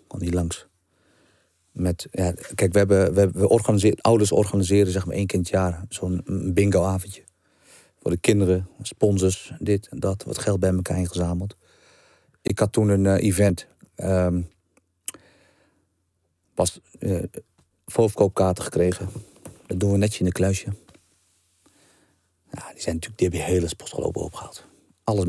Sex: male